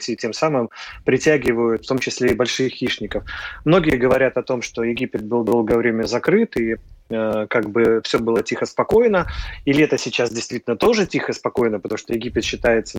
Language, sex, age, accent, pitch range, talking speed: Russian, male, 30-49, native, 110-130 Hz, 175 wpm